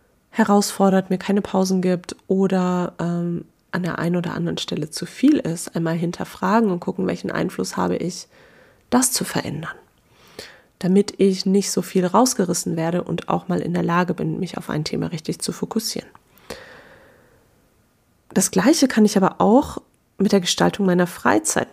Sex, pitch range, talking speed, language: female, 180-215 Hz, 165 wpm, German